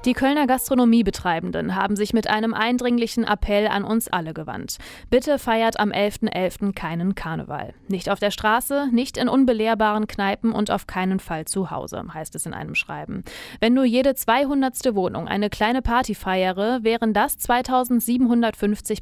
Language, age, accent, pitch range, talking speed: German, 30-49, German, 200-245 Hz, 160 wpm